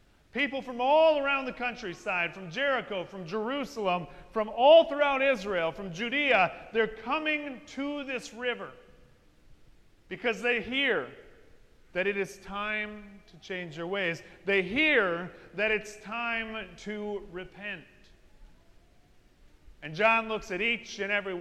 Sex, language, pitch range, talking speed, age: male, English, 135-210 Hz, 130 wpm, 40-59